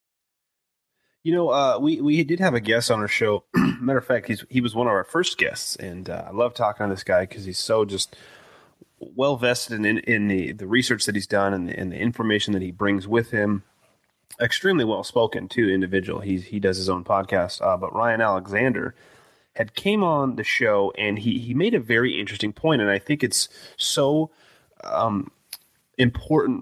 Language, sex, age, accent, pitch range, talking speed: English, male, 30-49, American, 100-130 Hz, 190 wpm